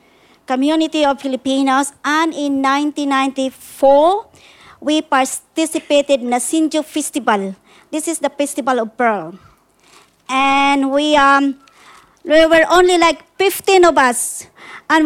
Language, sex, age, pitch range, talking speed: English, male, 50-69, 260-325 Hz, 115 wpm